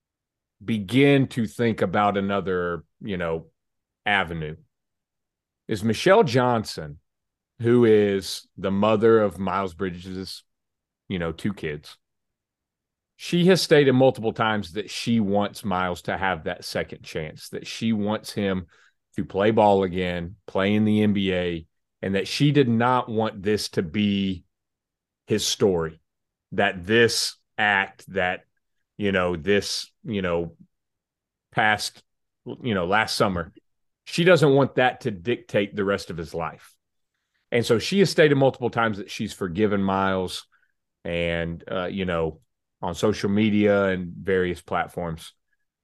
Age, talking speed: 30-49, 135 wpm